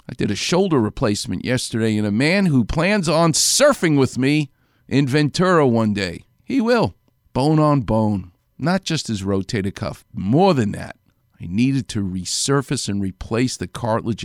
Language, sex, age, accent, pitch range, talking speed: English, male, 50-69, American, 105-140 Hz, 170 wpm